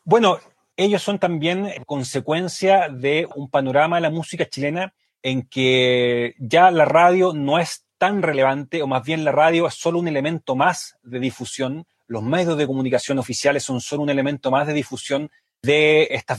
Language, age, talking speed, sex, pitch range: Spanish, 30-49, 170 wpm, male, 130-170 Hz